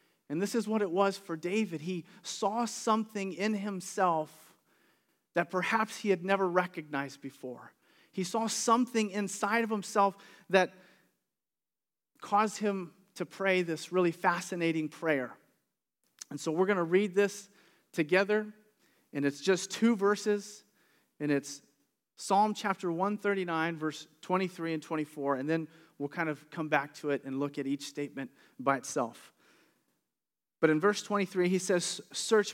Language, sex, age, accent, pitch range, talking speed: English, male, 40-59, American, 160-205 Hz, 150 wpm